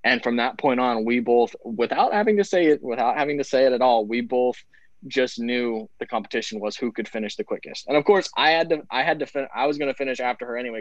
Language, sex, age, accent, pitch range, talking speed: English, male, 20-39, American, 110-125 Hz, 270 wpm